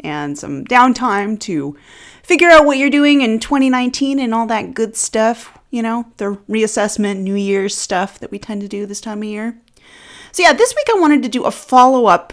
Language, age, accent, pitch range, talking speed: English, 30-49, American, 180-255 Hz, 205 wpm